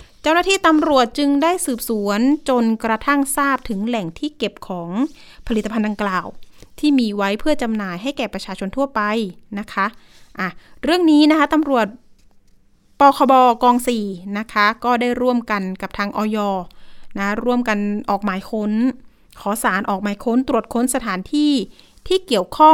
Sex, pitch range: female, 210-275 Hz